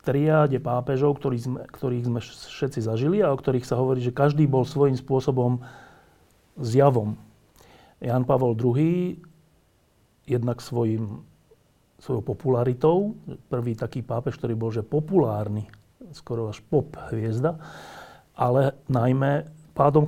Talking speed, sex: 125 wpm, male